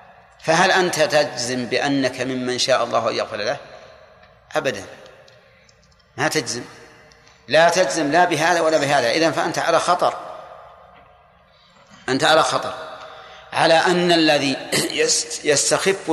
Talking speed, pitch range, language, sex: 110 wpm, 130-150 Hz, Arabic, male